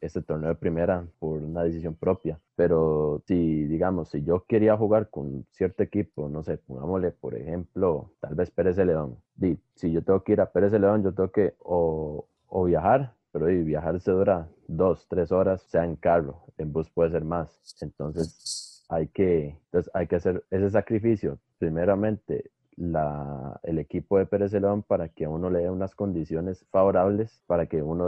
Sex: male